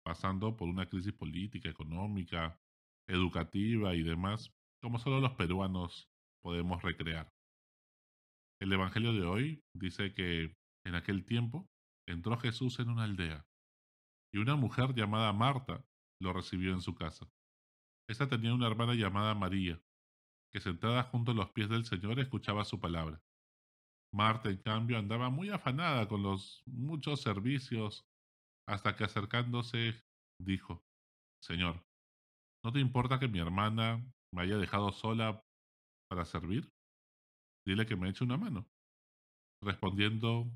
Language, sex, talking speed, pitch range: Spanish, male, 135 wpm, 80-115 Hz